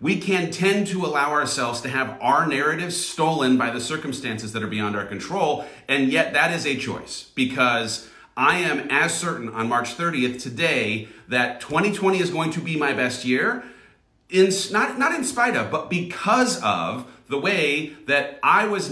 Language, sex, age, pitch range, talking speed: English, male, 40-59, 125-175 Hz, 180 wpm